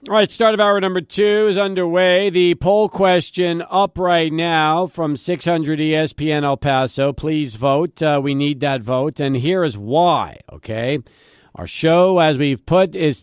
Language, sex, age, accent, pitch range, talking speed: English, male, 50-69, American, 155-215 Hz, 170 wpm